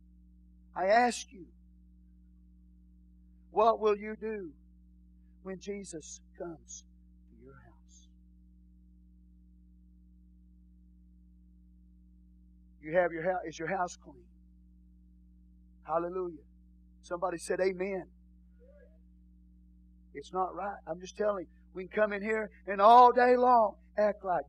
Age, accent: 50-69, American